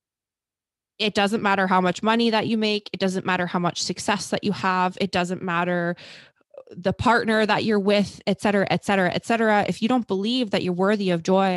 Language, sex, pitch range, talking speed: English, female, 180-220 Hz, 215 wpm